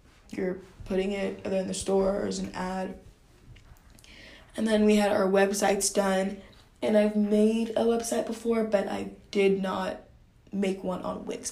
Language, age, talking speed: English, 10-29, 155 wpm